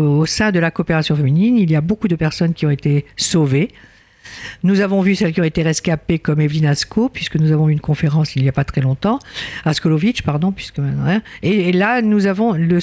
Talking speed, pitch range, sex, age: 230 wpm, 160-205 Hz, female, 50-69